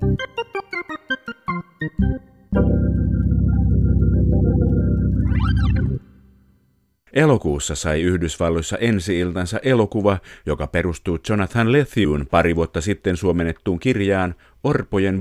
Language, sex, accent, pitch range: Finnish, male, native, 85-110 Hz